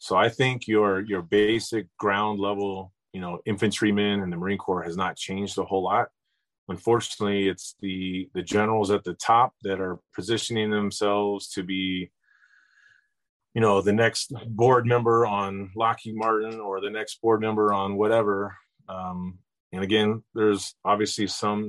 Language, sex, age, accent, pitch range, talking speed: English, male, 30-49, American, 95-110 Hz, 160 wpm